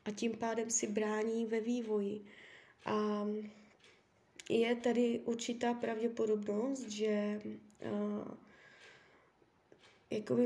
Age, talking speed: 20-39, 85 wpm